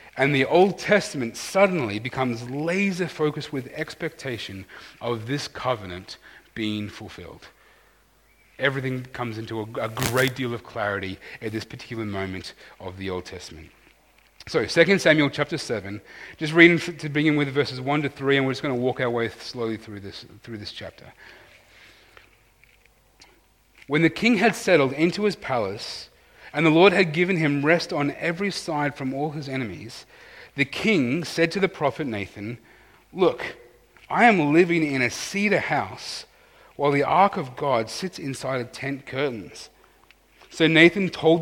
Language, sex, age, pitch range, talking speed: English, male, 30-49, 115-160 Hz, 160 wpm